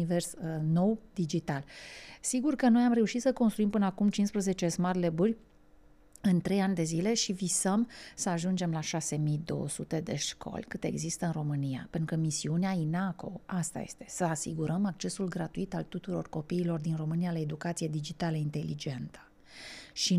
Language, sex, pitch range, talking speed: Romanian, female, 160-195 Hz, 160 wpm